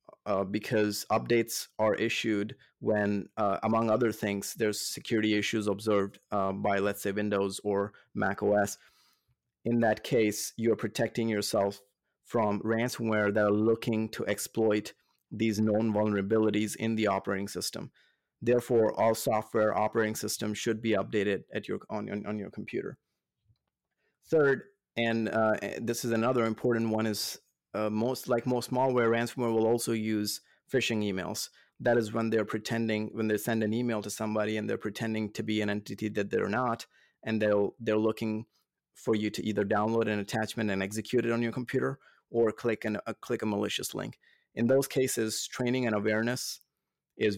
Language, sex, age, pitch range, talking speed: English, male, 30-49, 105-115 Hz, 165 wpm